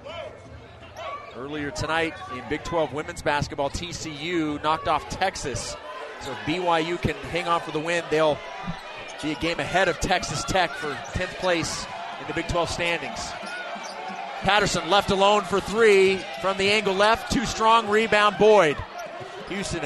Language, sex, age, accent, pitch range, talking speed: English, male, 30-49, American, 170-210 Hz, 150 wpm